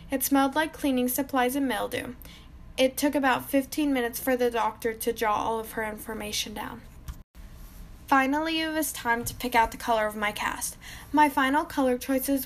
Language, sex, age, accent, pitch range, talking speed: English, female, 10-29, American, 235-275 Hz, 185 wpm